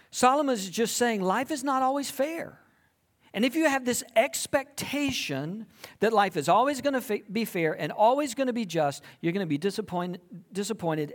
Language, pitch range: English, 135-215 Hz